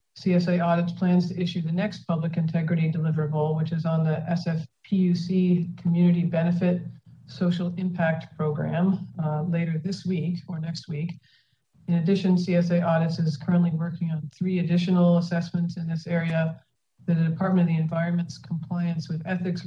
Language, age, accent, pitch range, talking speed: English, 50-69, American, 155-175 Hz, 150 wpm